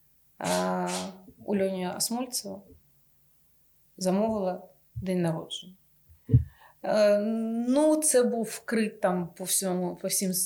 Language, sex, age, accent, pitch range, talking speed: Ukrainian, female, 30-49, native, 180-220 Hz, 75 wpm